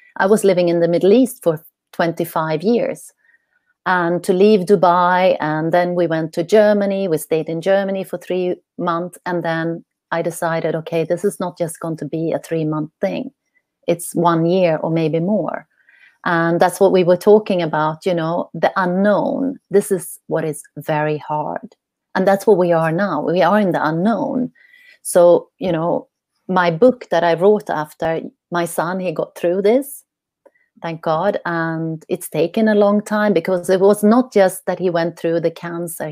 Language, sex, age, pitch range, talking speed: English, female, 30-49, 165-210 Hz, 185 wpm